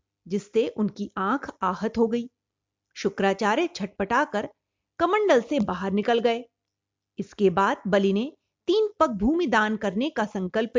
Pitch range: 195-265 Hz